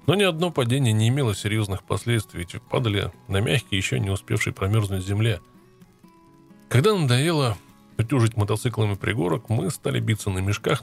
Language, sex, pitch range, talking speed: Russian, male, 100-130 Hz, 150 wpm